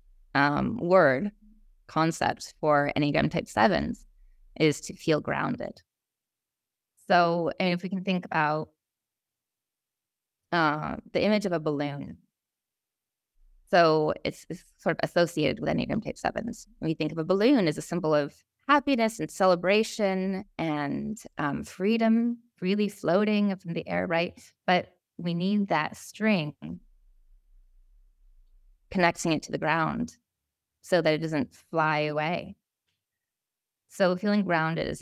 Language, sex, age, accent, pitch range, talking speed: English, female, 20-39, American, 145-190 Hz, 130 wpm